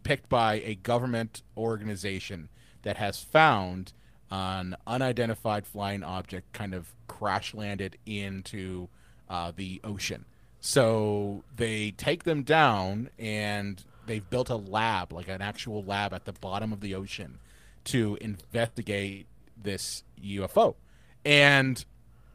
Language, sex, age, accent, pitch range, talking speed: English, male, 30-49, American, 100-120 Hz, 120 wpm